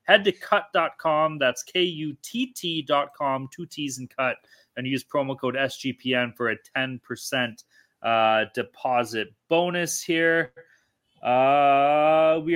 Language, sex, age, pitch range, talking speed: English, male, 30-49, 125-160 Hz, 125 wpm